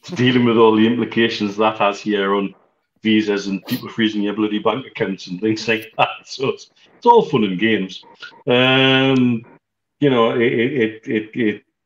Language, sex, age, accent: English, male, 40-59, British